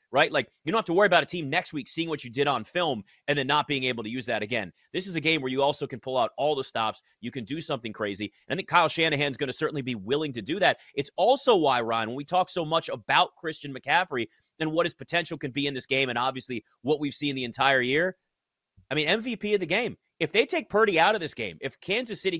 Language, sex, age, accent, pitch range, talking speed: English, male, 30-49, American, 130-170 Hz, 280 wpm